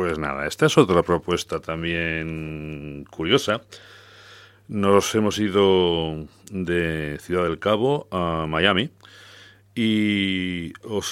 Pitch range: 85-105 Hz